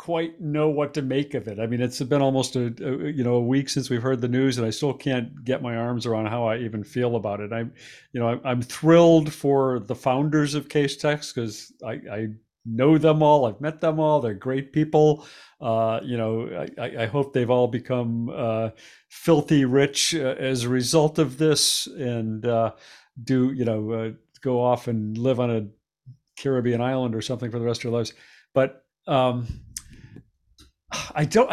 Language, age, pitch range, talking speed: English, 50-69, 120-145 Hz, 200 wpm